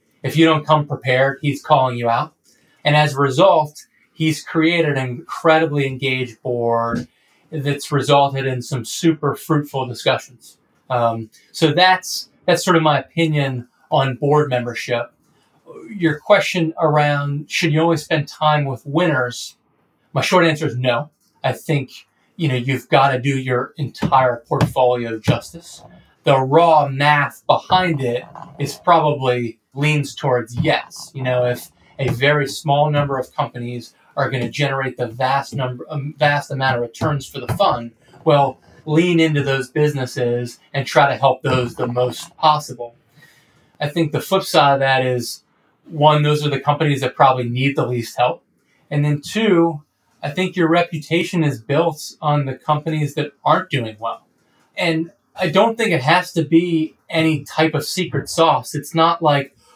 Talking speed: 160 wpm